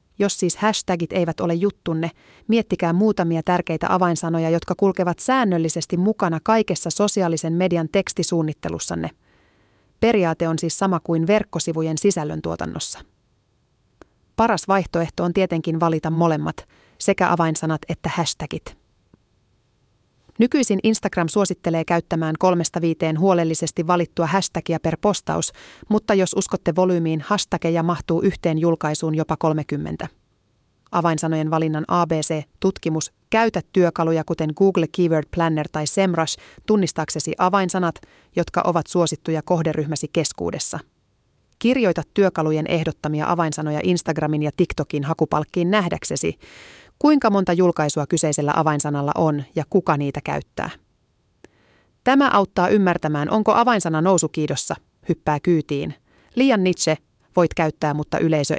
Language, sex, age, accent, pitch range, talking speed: Finnish, female, 30-49, native, 155-190 Hz, 110 wpm